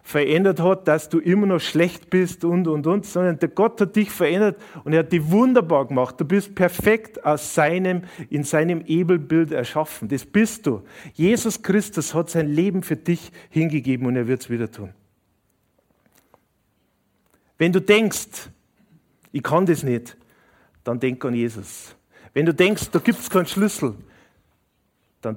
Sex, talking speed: male, 160 wpm